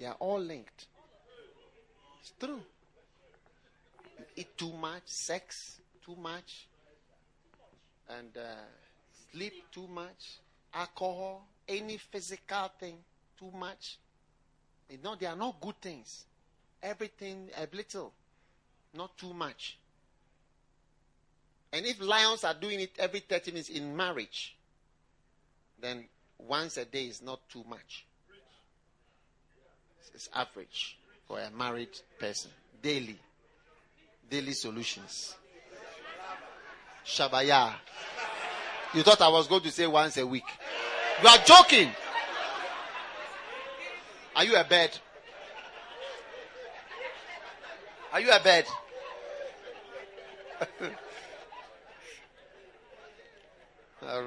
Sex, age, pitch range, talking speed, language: male, 50-69, 135-210 Hz, 95 wpm, English